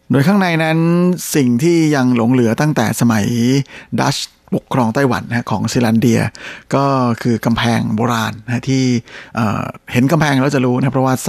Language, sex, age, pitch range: Thai, male, 60-79, 115-135 Hz